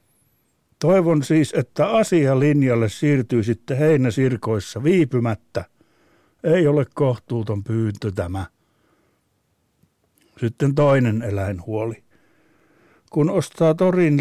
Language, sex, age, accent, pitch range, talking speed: Finnish, male, 60-79, native, 120-165 Hz, 80 wpm